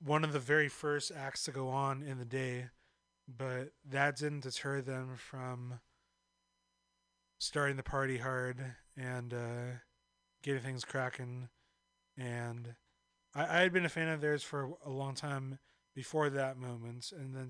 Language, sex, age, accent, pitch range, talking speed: English, male, 30-49, American, 125-150 Hz, 155 wpm